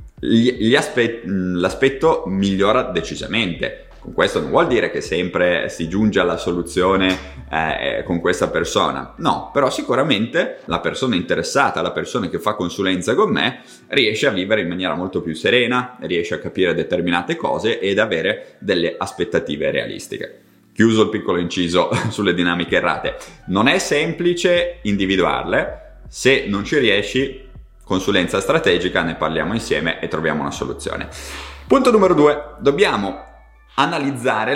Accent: native